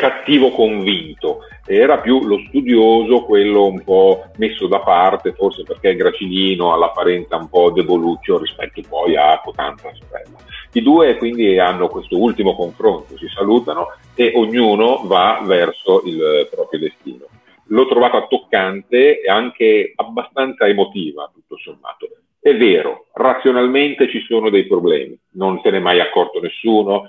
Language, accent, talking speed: Italian, native, 140 wpm